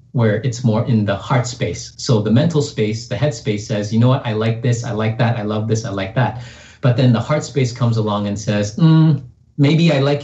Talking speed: 250 wpm